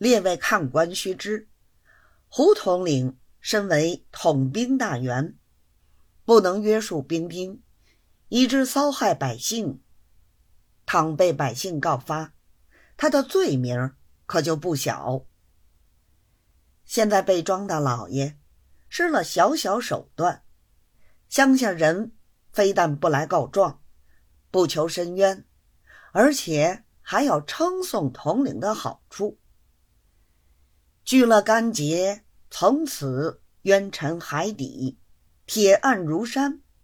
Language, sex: Chinese, female